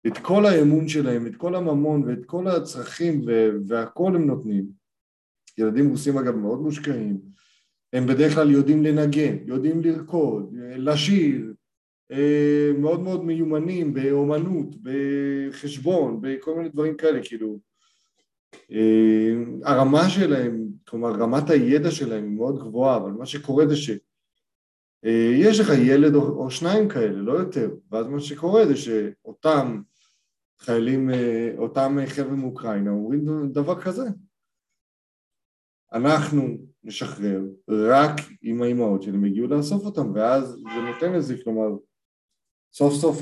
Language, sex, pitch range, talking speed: Hebrew, male, 115-150 Hz, 120 wpm